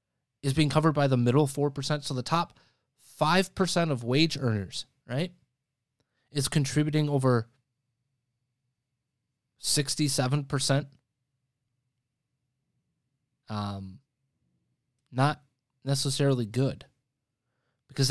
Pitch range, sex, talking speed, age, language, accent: 125-150 Hz, male, 80 wpm, 20-39, English, American